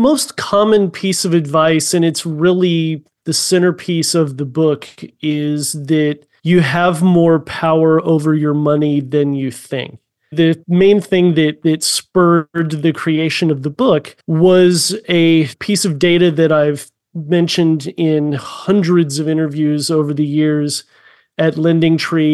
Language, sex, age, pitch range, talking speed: English, male, 30-49, 150-170 Hz, 140 wpm